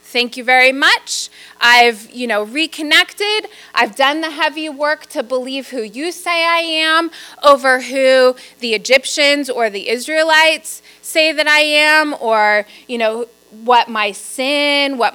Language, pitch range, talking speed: English, 245-330 Hz, 150 wpm